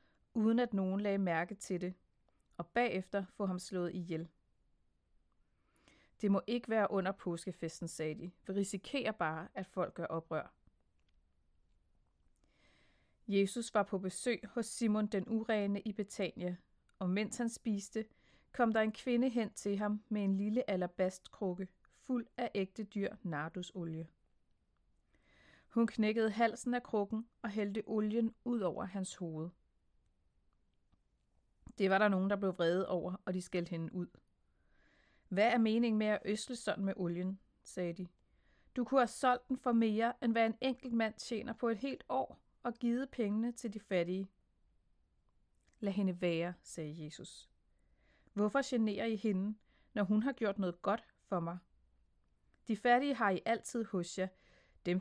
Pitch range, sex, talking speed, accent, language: 180-225 Hz, female, 155 wpm, native, Danish